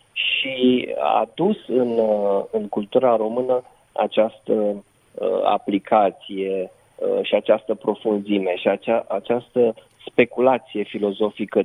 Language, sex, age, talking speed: Romanian, male, 20-39, 80 wpm